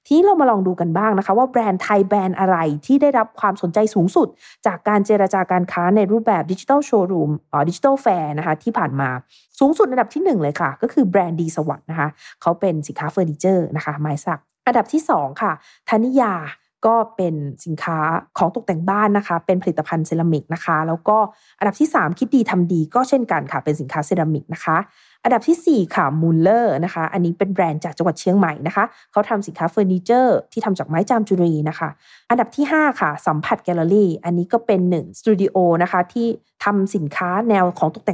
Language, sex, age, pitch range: Thai, female, 20-39, 165-220 Hz